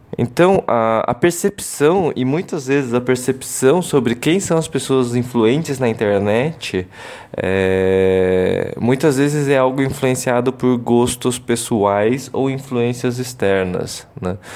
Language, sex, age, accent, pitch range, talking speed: Portuguese, male, 20-39, Brazilian, 105-130 Hz, 120 wpm